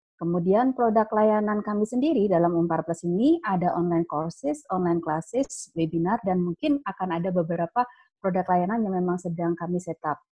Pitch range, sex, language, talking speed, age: 175-220 Hz, female, Indonesian, 155 wpm, 30-49